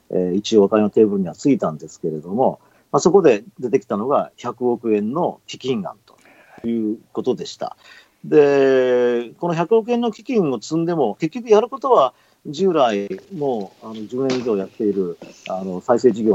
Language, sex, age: Japanese, male, 40-59